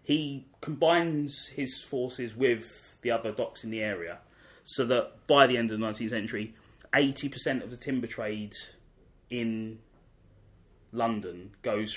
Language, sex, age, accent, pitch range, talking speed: English, male, 20-39, British, 105-125 Hz, 140 wpm